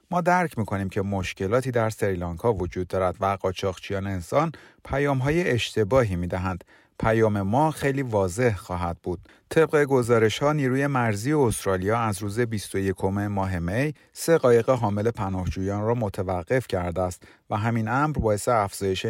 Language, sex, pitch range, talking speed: Persian, male, 95-130 Hz, 140 wpm